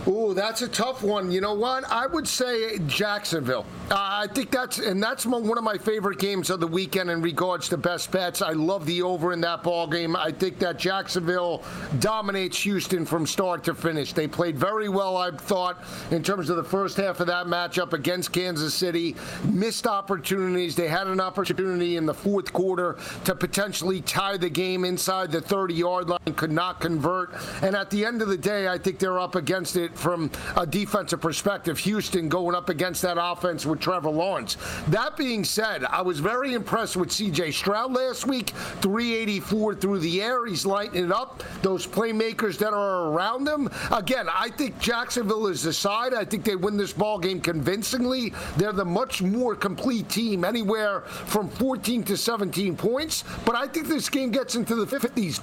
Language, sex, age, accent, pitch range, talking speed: English, male, 50-69, American, 175-210 Hz, 190 wpm